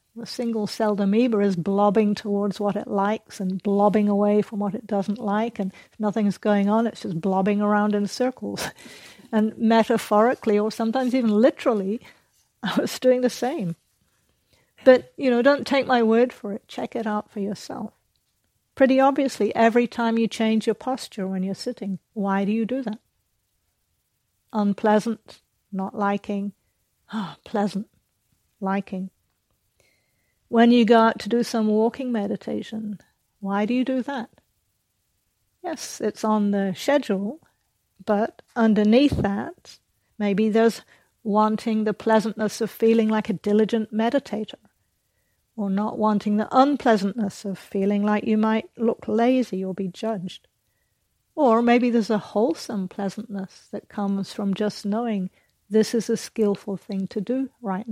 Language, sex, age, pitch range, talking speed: English, female, 60-79, 200-230 Hz, 145 wpm